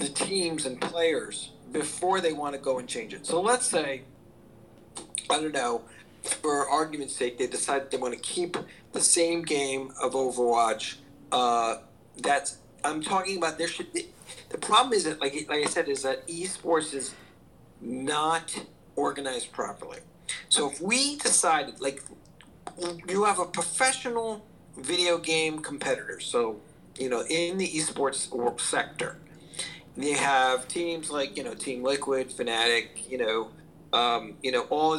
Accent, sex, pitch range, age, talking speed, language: American, male, 125-170 Hz, 50-69, 155 wpm, English